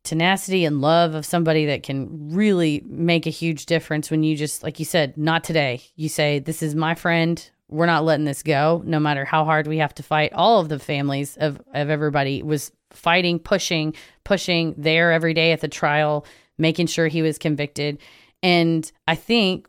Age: 30-49